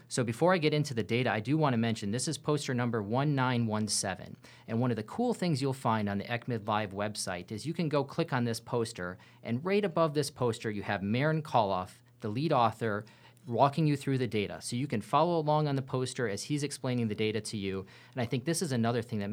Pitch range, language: 110-135 Hz, English